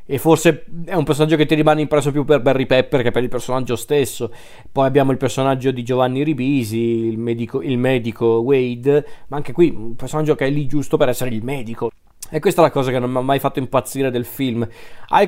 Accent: native